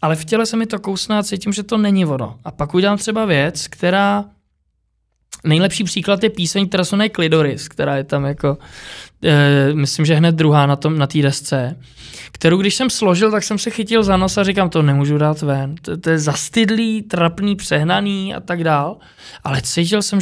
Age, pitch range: 20-39, 150-205 Hz